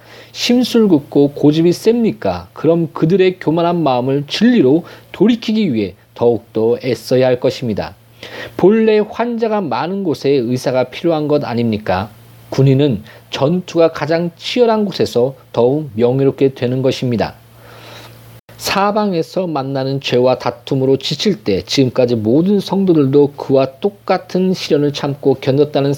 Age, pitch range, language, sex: 40-59, 115-175 Hz, Korean, male